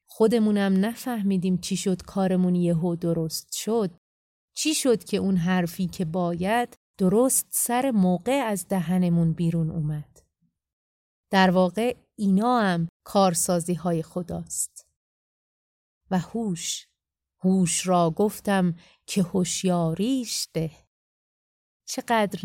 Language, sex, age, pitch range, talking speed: Persian, female, 30-49, 175-205 Hz, 100 wpm